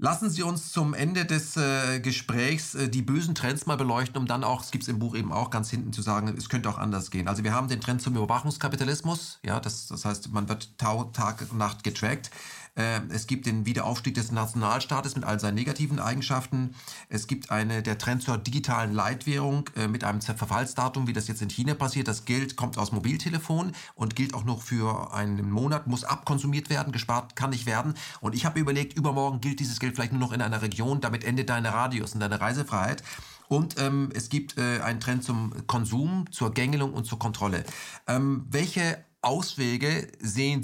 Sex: male